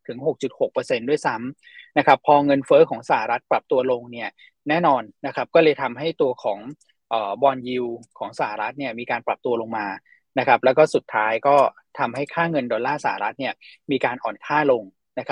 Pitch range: 130-190 Hz